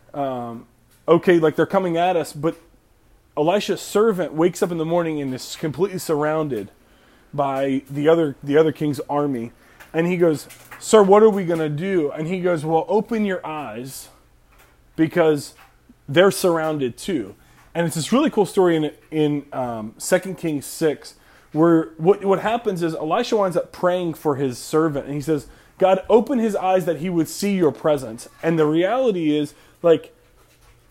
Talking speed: 170 wpm